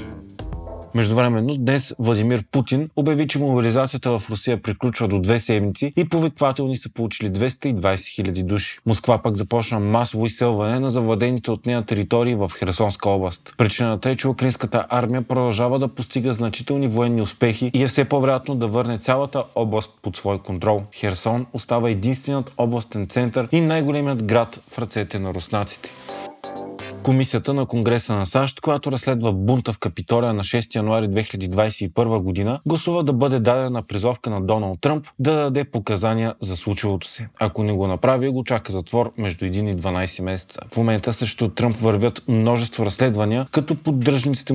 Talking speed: 160 wpm